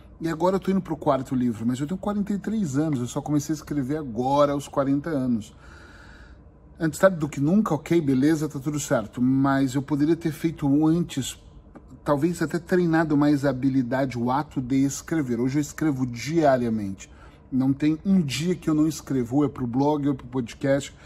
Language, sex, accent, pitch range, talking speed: Portuguese, male, Brazilian, 125-155 Hz, 195 wpm